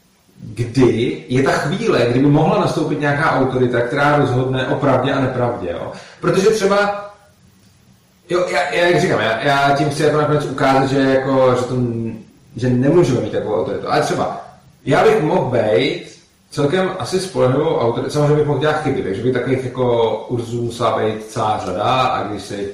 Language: Czech